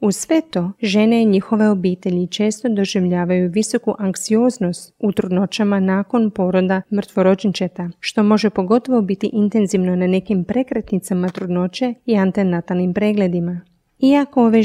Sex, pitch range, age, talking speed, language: female, 185-225 Hz, 30-49, 125 wpm, Croatian